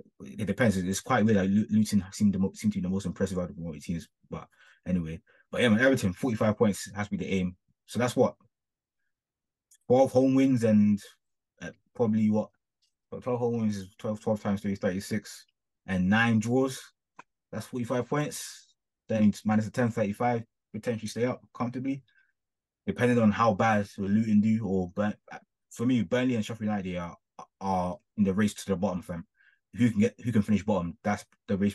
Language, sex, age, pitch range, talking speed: English, male, 20-39, 95-125 Hz, 200 wpm